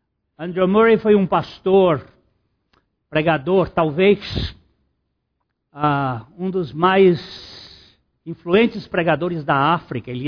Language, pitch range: Portuguese, 150-205 Hz